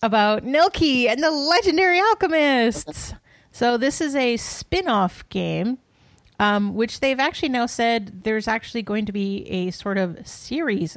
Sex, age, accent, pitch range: female, 30-49, American, 190-250 Hz